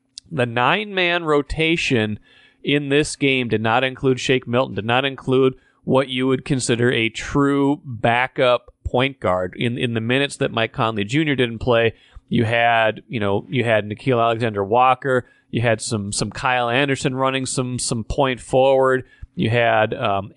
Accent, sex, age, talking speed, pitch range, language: American, male, 30-49, 165 wpm, 115-135 Hz, English